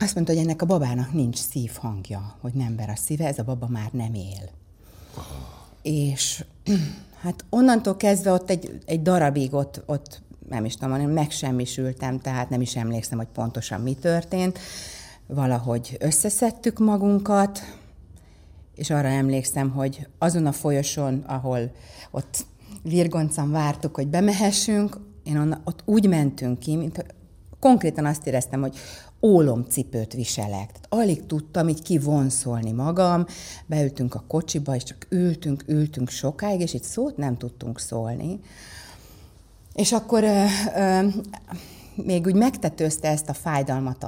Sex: female